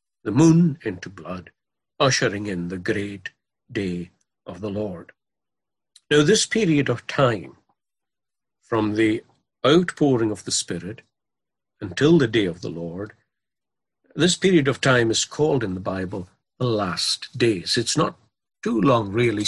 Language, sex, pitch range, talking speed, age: English, male, 105-140 Hz, 140 wpm, 60-79